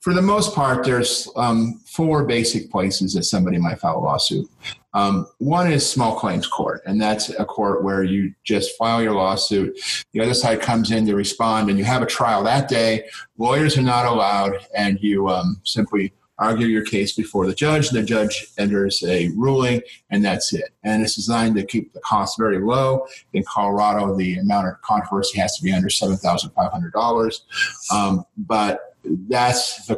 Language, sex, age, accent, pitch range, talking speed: English, male, 40-59, American, 100-125 Hz, 180 wpm